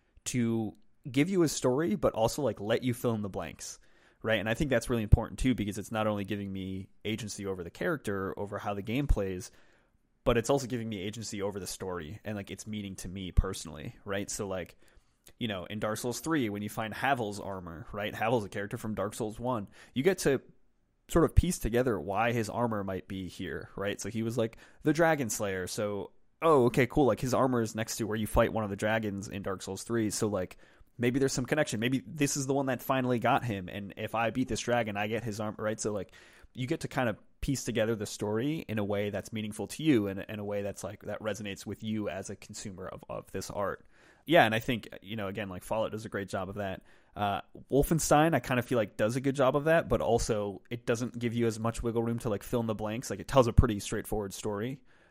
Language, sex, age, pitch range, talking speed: English, male, 20-39, 100-125 Hz, 250 wpm